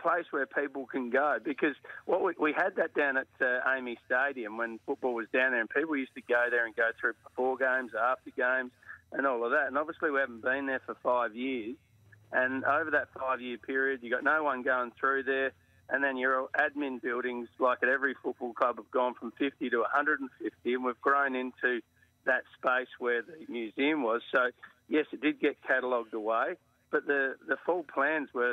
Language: English